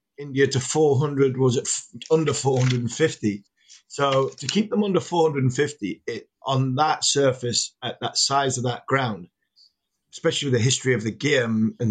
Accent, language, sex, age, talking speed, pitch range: British, English, male, 30-49, 155 wpm, 110-135 Hz